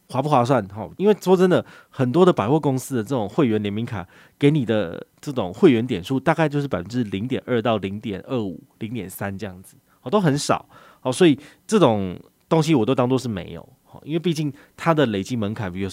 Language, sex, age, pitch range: Chinese, male, 20-39, 105-140 Hz